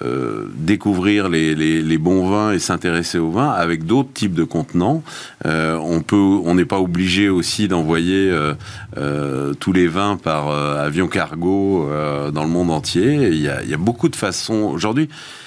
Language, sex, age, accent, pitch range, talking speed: French, male, 40-59, French, 85-120 Hz, 190 wpm